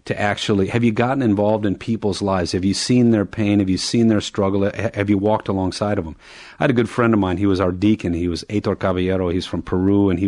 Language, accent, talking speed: English, American, 265 wpm